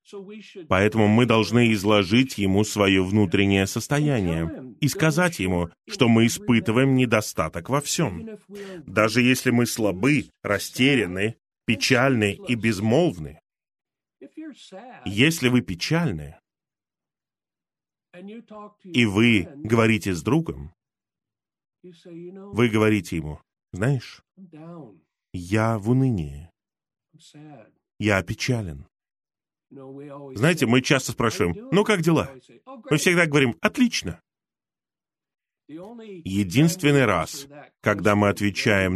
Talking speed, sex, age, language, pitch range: 90 wpm, male, 30-49, Russian, 105-145 Hz